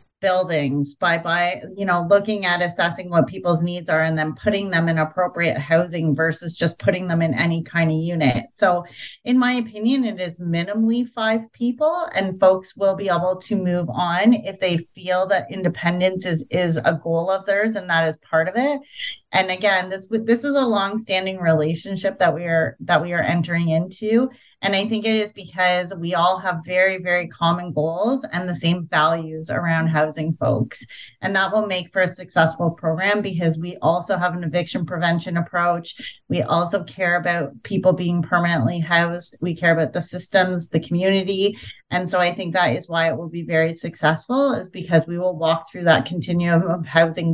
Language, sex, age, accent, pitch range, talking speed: English, female, 30-49, American, 165-195 Hz, 190 wpm